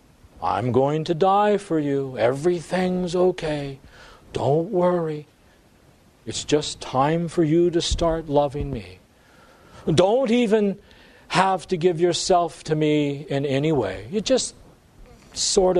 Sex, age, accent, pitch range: male, 50-69, American, 145-225 Hz